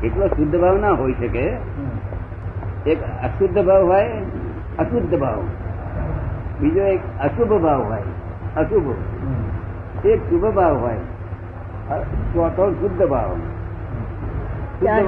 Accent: native